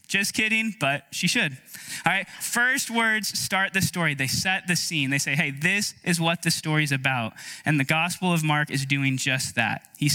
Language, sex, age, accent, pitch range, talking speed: English, male, 20-39, American, 135-170 Hz, 215 wpm